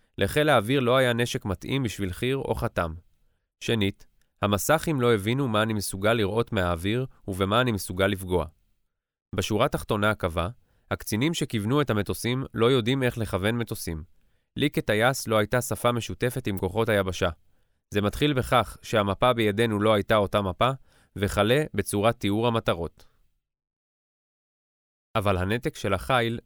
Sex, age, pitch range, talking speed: male, 20-39, 100-125 Hz, 140 wpm